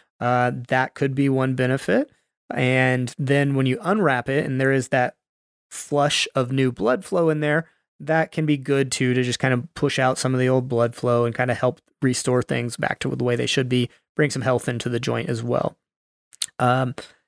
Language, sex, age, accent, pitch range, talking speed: English, male, 30-49, American, 130-155 Hz, 215 wpm